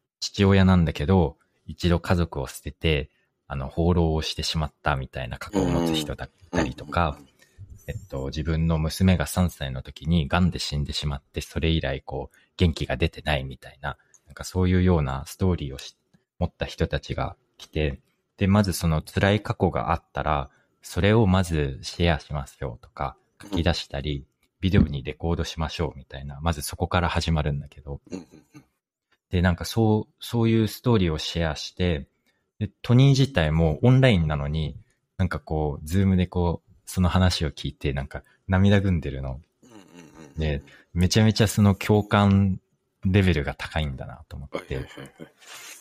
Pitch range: 75-95 Hz